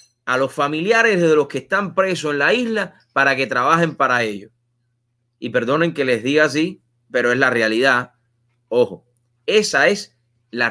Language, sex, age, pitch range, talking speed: English, male, 30-49, 120-160 Hz, 170 wpm